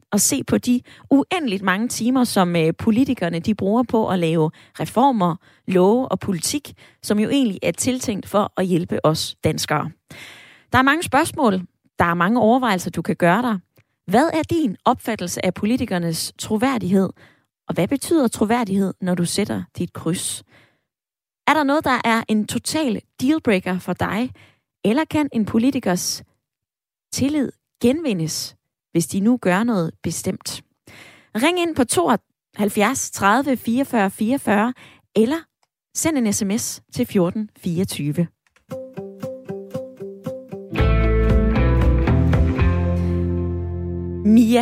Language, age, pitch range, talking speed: Danish, 20-39, 175-250 Hz, 120 wpm